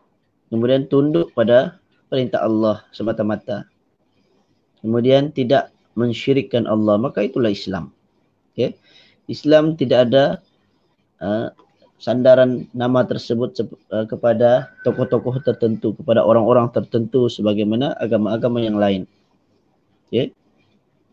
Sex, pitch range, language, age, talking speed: male, 115-150 Hz, Malay, 20-39, 95 wpm